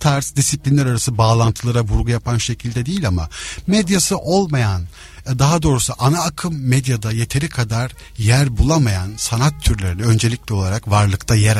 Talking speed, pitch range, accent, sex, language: 135 wpm, 100-140 Hz, native, male, Turkish